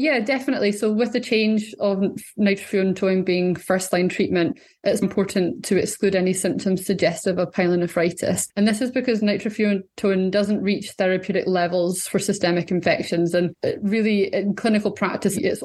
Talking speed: 145 wpm